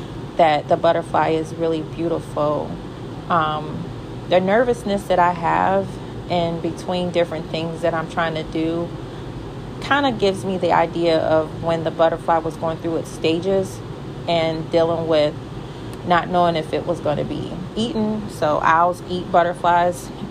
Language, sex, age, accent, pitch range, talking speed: English, female, 30-49, American, 150-175 Hz, 155 wpm